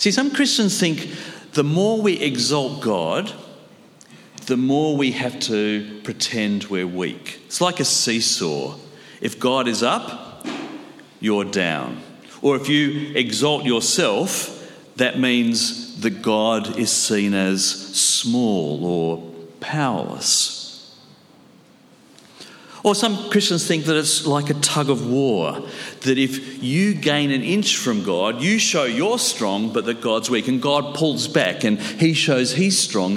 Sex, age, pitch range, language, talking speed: male, 50-69, 125-195 Hz, English, 140 wpm